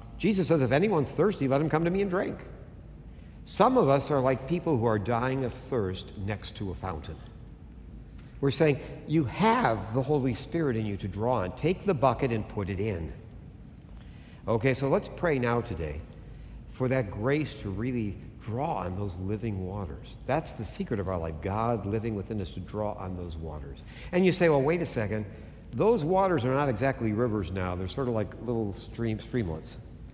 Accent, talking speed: American, 195 wpm